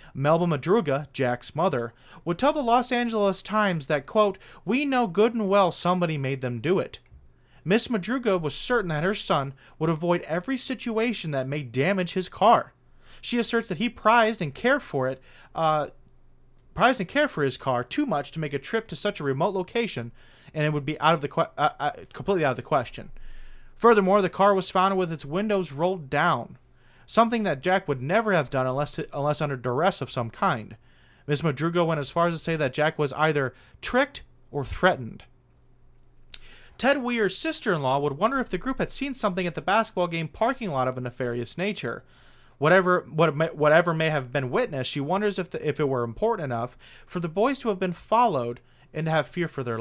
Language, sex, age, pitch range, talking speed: English, male, 30-49, 140-205 Hz, 205 wpm